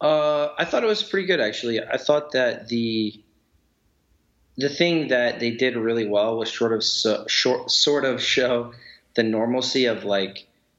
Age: 30-49